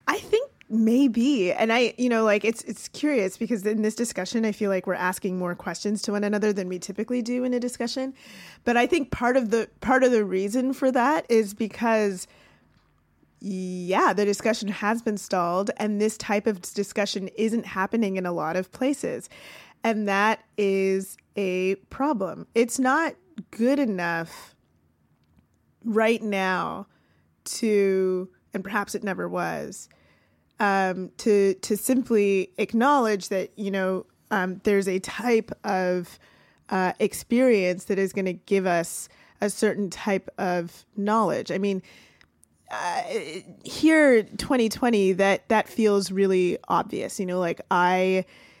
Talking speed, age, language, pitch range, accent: 150 wpm, 20-39, English, 190-230 Hz, American